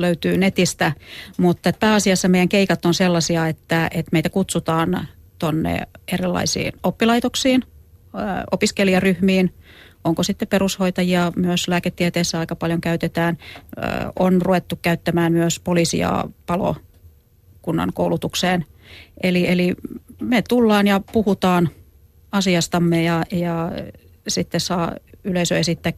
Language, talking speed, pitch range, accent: Finnish, 100 wpm, 165-185 Hz, native